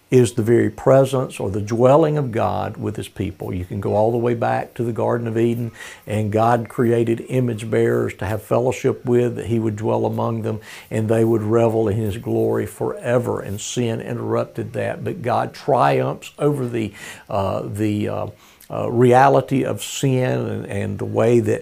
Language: English